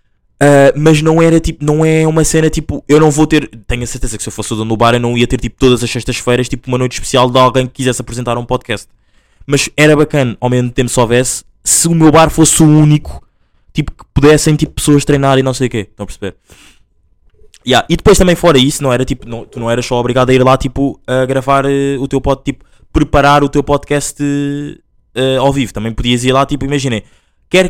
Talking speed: 245 wpm